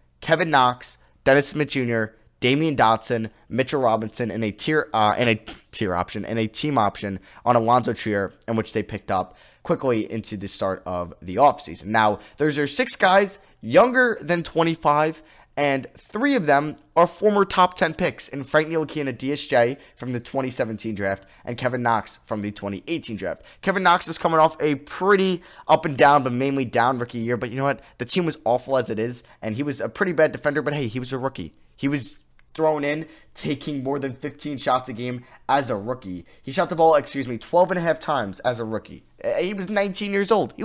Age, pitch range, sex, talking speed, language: 20-39, 115-160 Hz, male, 210 wpm, English